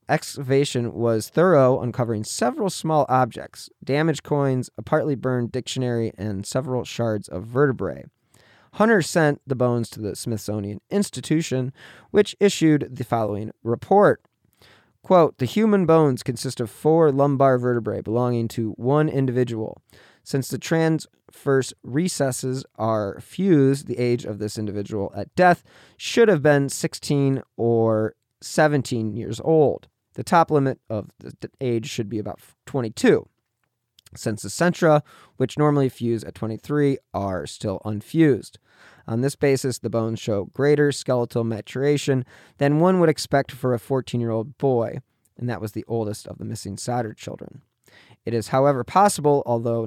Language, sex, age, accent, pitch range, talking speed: English, male, 20-39, American, 115-145 Hz, 145 wpm